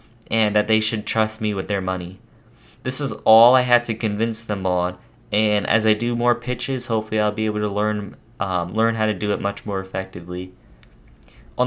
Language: English